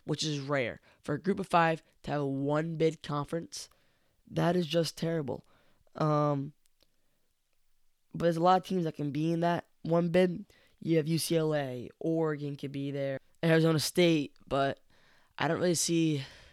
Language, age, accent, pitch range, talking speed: English, 10-29, American, 140-160 Hz, 165 wpm